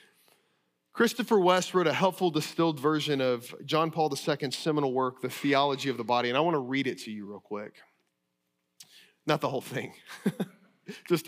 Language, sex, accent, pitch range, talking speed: English, male, American, 130-185 Hz, 175 wpm